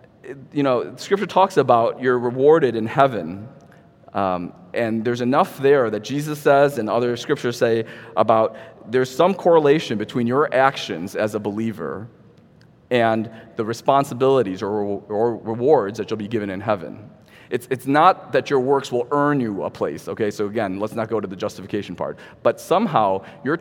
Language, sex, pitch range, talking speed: English, male, 110-155 Hz, 170 wpm